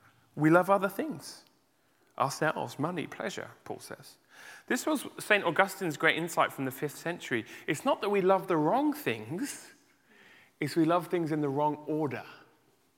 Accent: British